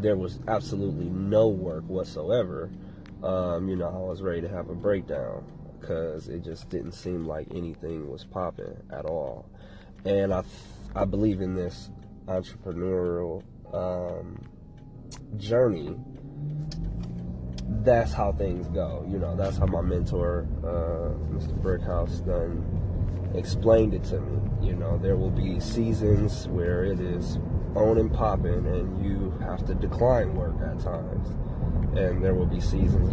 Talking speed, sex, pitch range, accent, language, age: 145 wpm, male, 90-105 Hz, American, English, 20-39